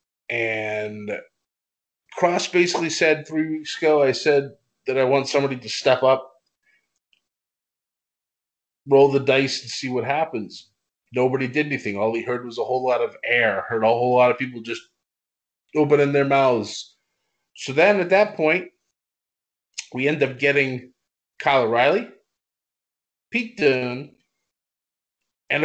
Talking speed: 140 wpm